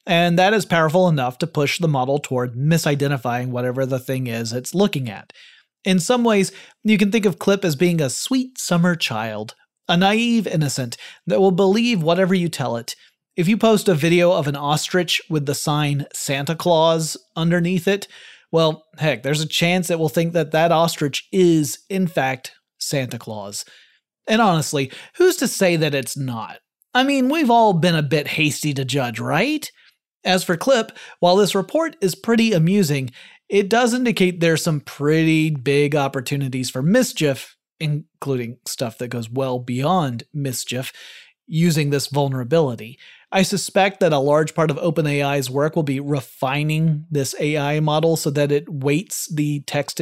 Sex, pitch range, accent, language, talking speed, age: male, 140-185 Hz, American, English, 170 wpm, 30-49